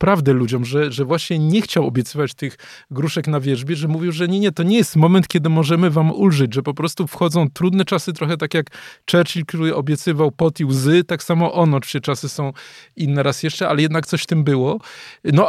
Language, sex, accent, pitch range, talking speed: Polish, male, native, 145-175 Hz, 215 wpm